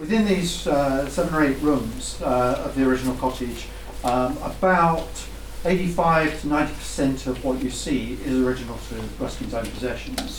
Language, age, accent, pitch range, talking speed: English, 50-69, British, 120-150 Hz, 155 wpm